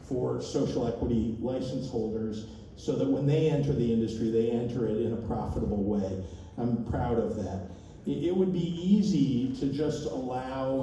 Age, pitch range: 50-69, 110-135 Hz